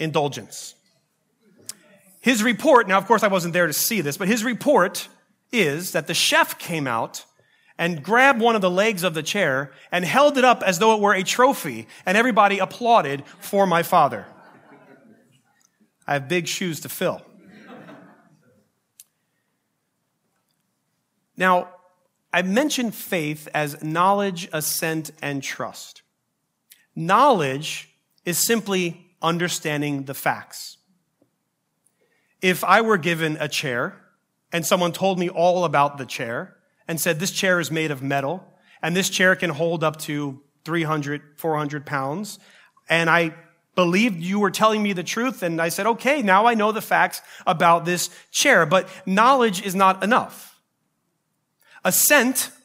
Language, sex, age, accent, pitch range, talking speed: English, male, 30-49, American, 160-205 Hz, 145 wpm